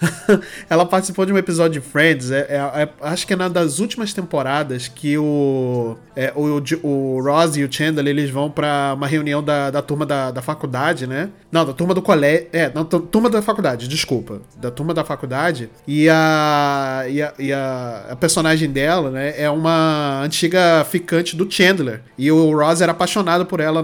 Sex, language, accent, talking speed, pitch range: male, Portuguese, Brazilian, 170 wpm, 145-185 Hz